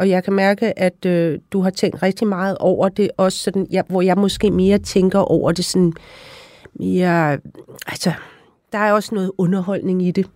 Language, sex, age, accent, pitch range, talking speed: Danish, female, 40-59, native, 175-205 Hz, 190 wpm